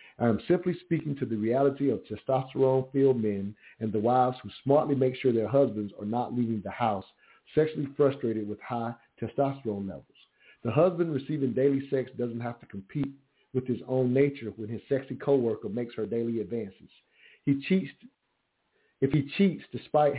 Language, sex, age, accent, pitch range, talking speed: English, male, 50-69, American, 115-145 Hz, 170 wpm